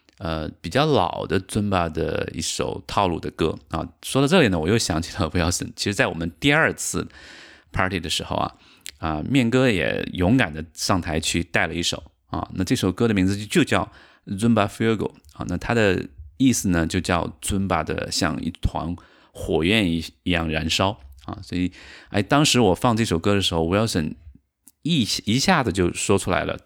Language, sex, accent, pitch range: Chinese, male, native, 80-95 Hz